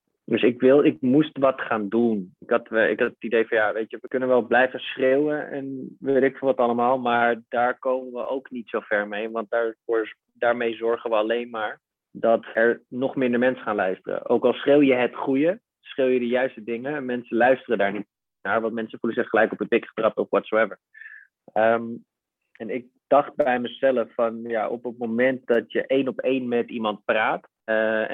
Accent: Dutch